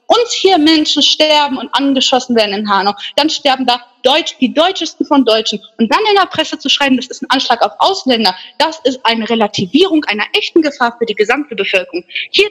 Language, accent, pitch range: German, German, 245-330 Hz